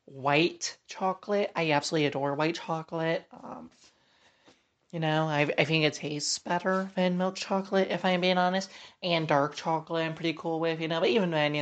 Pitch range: 150-185 Hz